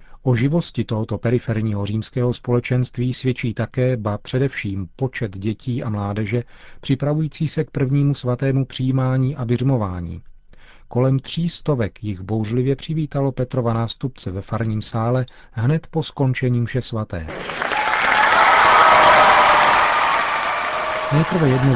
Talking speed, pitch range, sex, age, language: 110 wpm, 110-135 Hz, male, 40-59, Czech